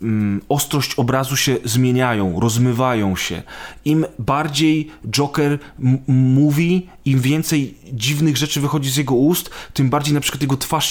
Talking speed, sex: 140 wpm, male